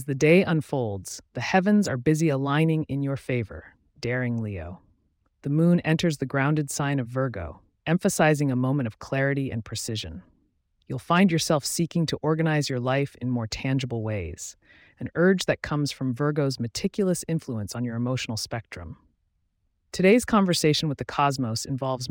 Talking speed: 160 wpm